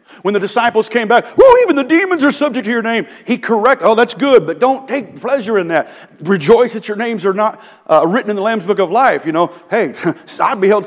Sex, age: male, 50-69